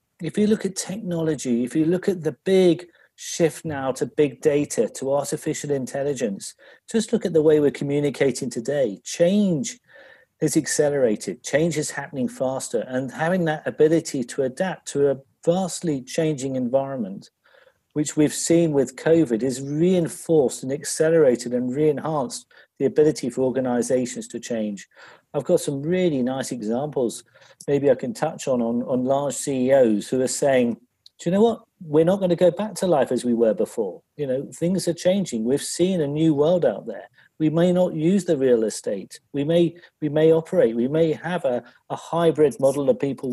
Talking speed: 180 wpm